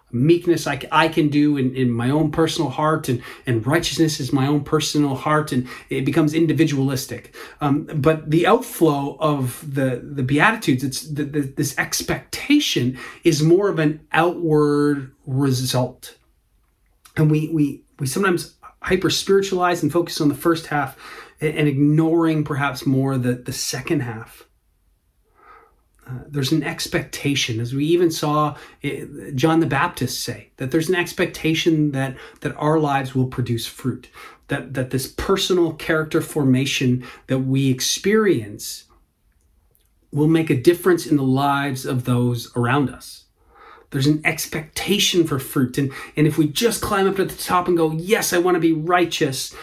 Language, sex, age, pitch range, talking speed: English, male, 30-49, 135-165 Hz, 155 wpm